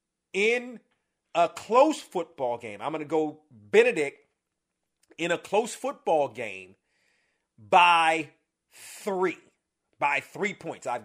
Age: 40-59